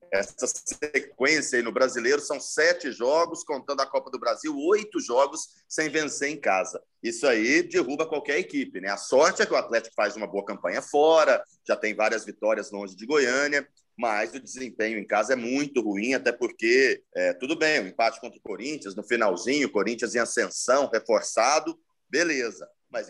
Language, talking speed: Portuguese, 185 wpm